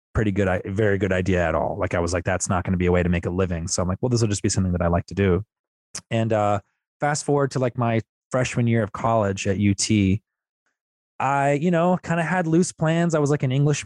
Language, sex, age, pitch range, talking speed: English, male, 20-39, 100-125 Hz, 270 wpm